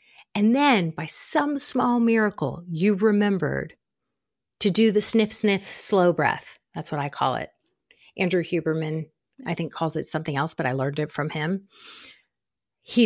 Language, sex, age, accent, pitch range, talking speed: English, female, 40-59, American, 165-215 Hz, 160 wpm